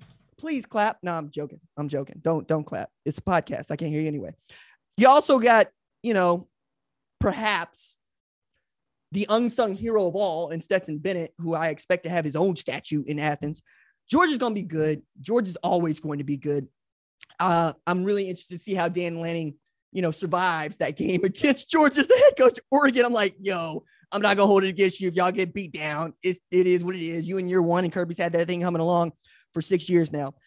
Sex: male